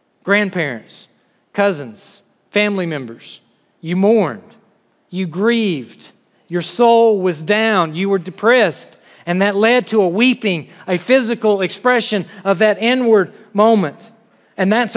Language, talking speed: English, 120 wpm